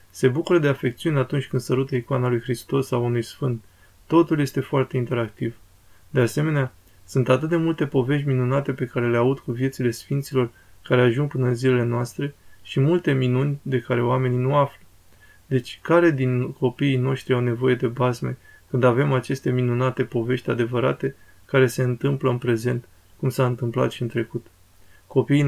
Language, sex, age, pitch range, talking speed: Romanian, male, 20-39, 120-135 Hz, 170 wpm